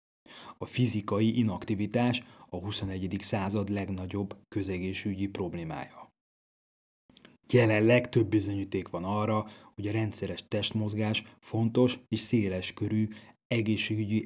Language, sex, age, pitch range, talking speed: Hungarian, male, 30-49, 95-110 Hz, 95 wpm